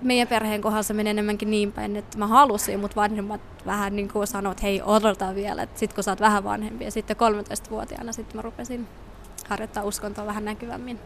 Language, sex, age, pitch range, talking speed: Finnish, female, 20-39, 205-225 Hz, 200 wpm